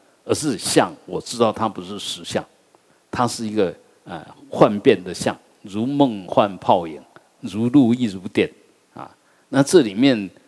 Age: 50-69